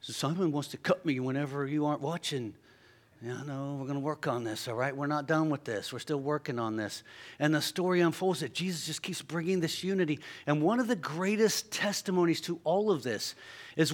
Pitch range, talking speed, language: 120-165 Hz, 220 wpm, English